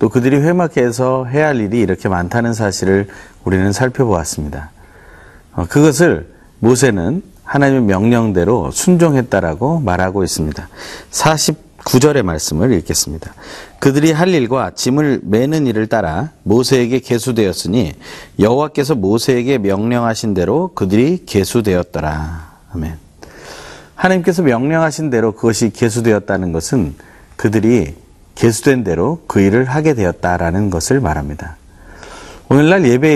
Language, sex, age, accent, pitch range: Korean, male, 40-59, native, 90-135 Hz